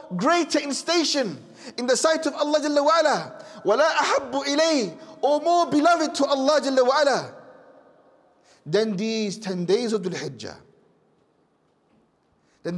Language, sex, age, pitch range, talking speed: English, male, 40-59, 200-280 Hz, 110 wpm